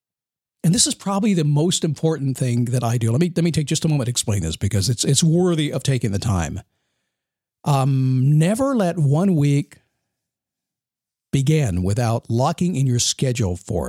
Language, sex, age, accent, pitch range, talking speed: English, male, 50-69, American, 120-170 Hz, 180 wpm